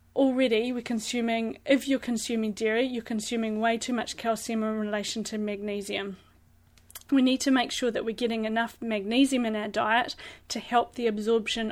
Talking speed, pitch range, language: 175 wpm, 220-240 Hz, English